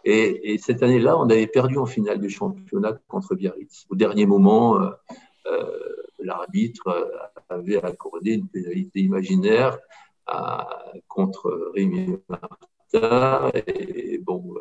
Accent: French